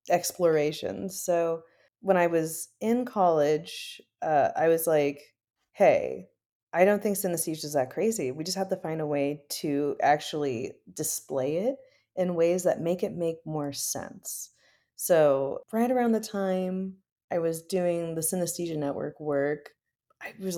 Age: 30-49